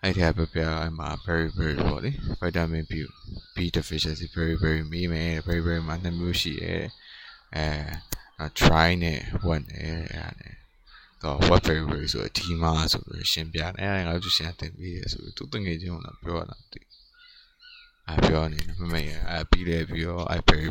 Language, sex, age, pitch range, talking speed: English, male, 20-39, 80-95 Hz, 50 wpm